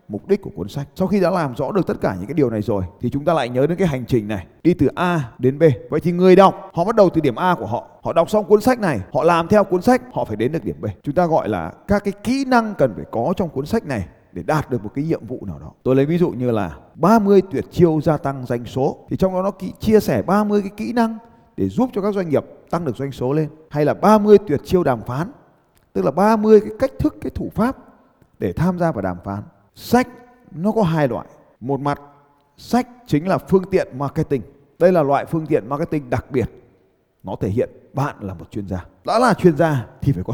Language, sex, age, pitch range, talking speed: Vietnamese, male, 20-39, 125-195 Hz, 265 wpm